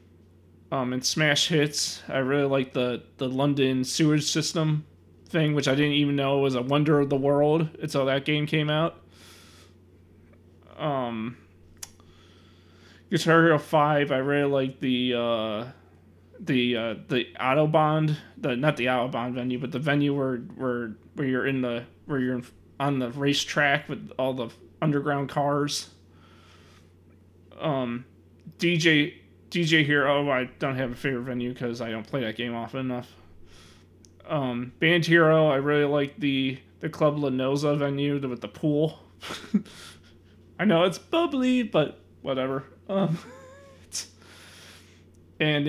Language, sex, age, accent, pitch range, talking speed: English, male, 20-39, American, 100-145 Hz, 140 wpm